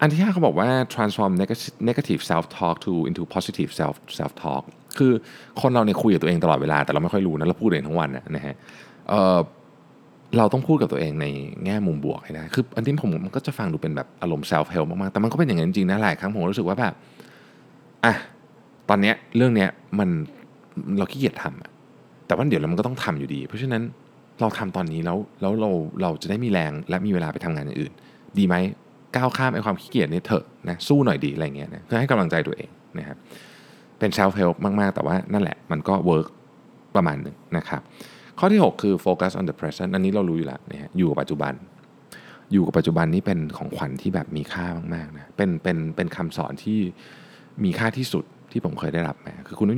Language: Thai